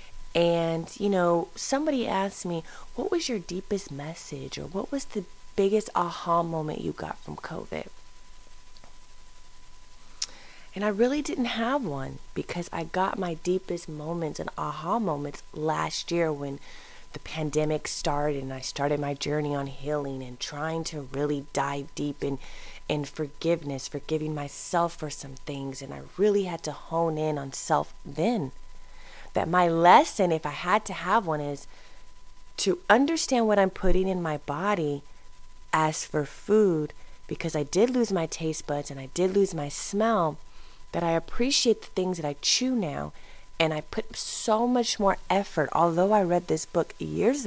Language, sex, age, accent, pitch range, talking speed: English, female, 30-49, American, 145-195 Hz, 165 wpm